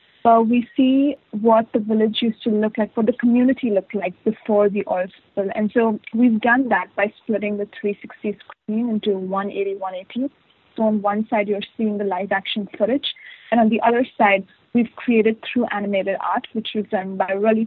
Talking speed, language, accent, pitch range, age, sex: 195 wpm, English, Indian, 200-240 Hz, 30-49, female